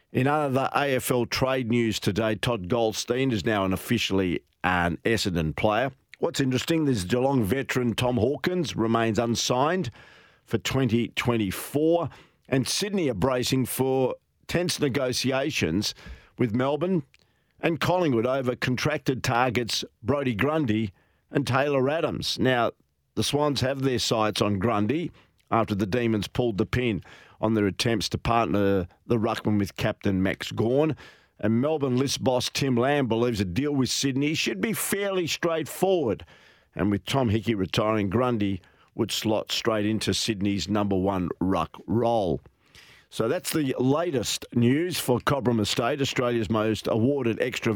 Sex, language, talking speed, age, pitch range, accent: male, English, 140 wpm, 50-69, 105-130 Hz, Australian